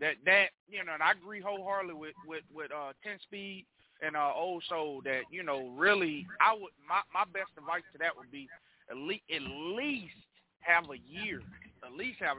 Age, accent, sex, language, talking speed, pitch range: 30-49, American, male, English, 205 wpm, 165-210 Hz